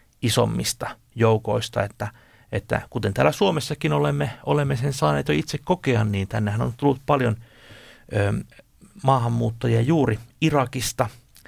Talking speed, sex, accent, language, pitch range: 120 wpm, male, native, Finnish, 110-140 Hz